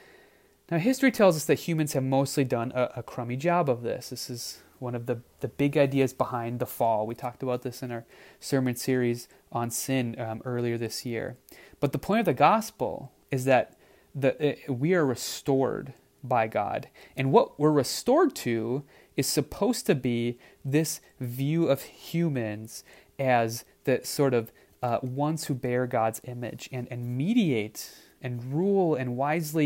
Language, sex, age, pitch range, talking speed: English, male, 30-49, 120-150 Hz, 170 wpm